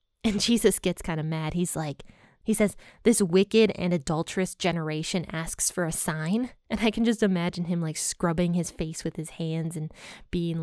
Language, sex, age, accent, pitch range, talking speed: English, female, 20-39, American, 175-225 Hz, 190 wpm